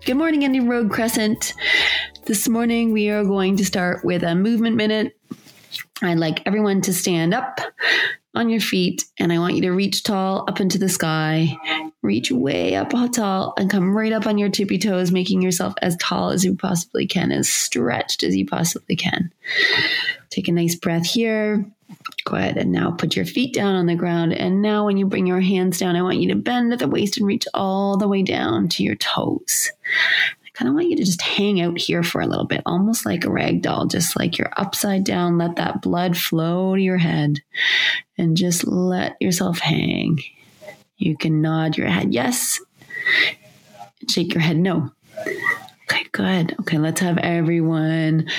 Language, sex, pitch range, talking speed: English, female, 170-225 Hz, 190 wpm